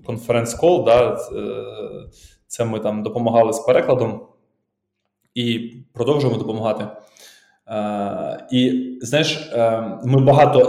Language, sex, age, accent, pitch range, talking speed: Ukrainian, male, 20-39, Serbian, 115-130 Hz, 85 wpm